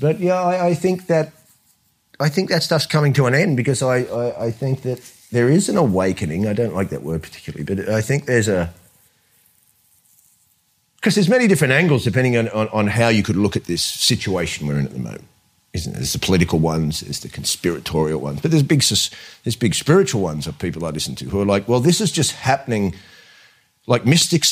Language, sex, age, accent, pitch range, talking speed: English, male, 40-59, Australian, 95-140 Hz, 220 wpm